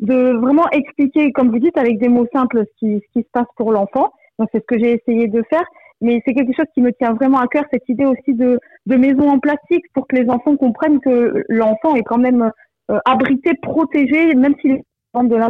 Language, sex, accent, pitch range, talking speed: French, female, French, 230-275 Hz, 240 wpm